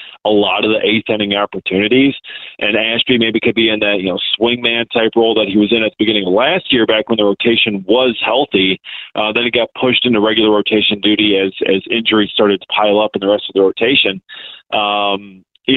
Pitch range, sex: 105-130 Hz, male